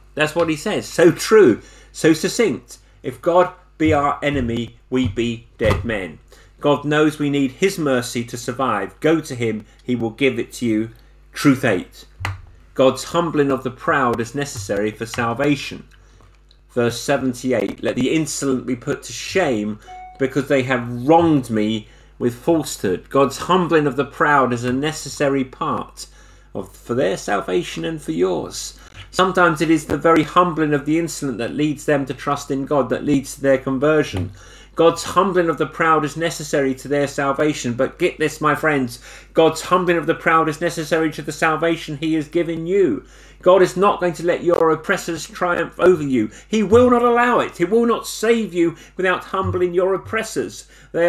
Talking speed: 180 wpm